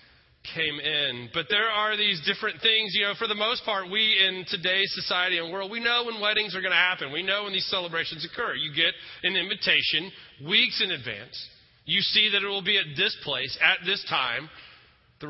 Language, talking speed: English, 210 wpm